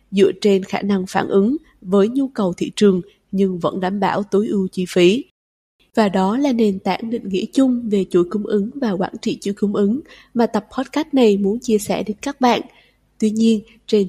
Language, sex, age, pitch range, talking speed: Vietnamese, female, 20-39, 195-250 Hz, 215 wpm